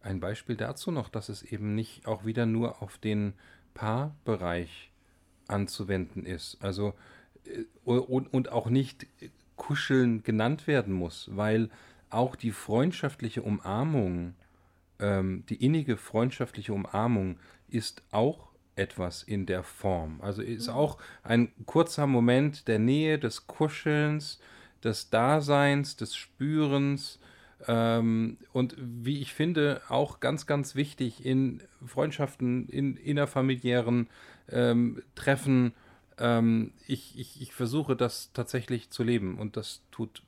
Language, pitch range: German, 105-130 Hz